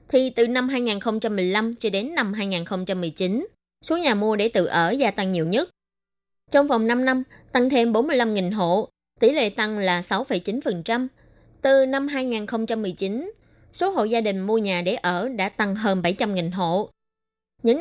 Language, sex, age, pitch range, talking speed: Vietnamese, female, 20-39, 190-250 Hz, 160 wpm